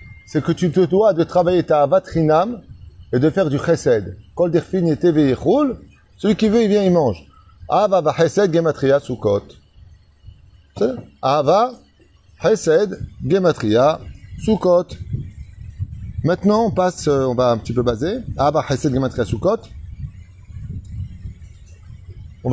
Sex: male